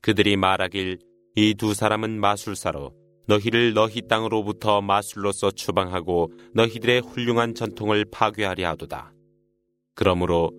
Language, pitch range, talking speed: Arabic, 95-115 Hz, 90 wpm